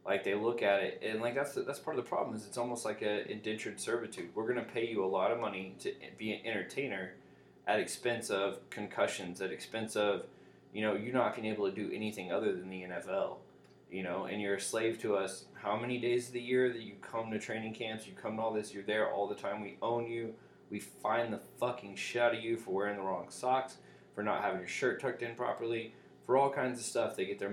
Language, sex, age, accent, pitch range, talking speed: English, male, 20-39, American, 100-130 Hz, 255 wpm